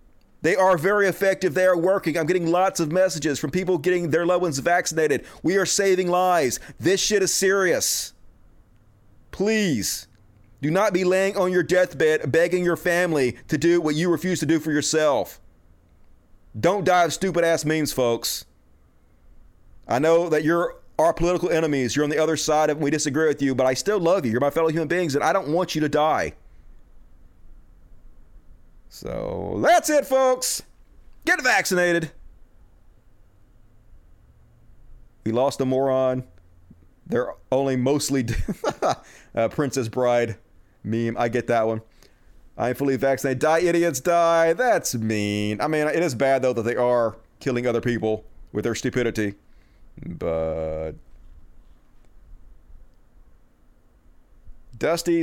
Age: 30-49